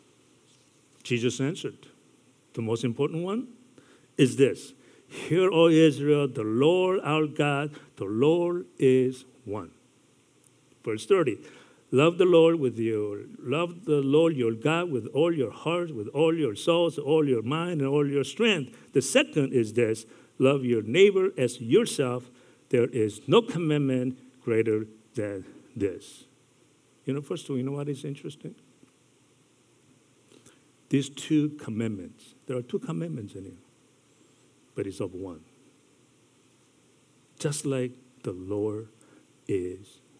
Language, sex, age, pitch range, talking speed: English, male, 50-69, 115-150 Hz, 135 wpm